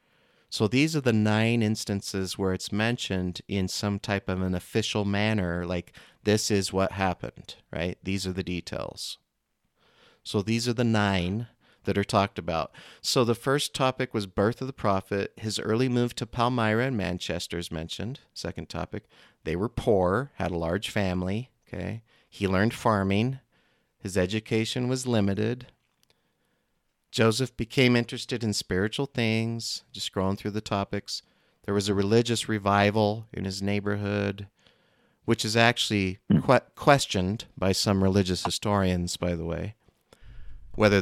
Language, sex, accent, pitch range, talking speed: English, male, American, 95-120 Hz, 150 wpm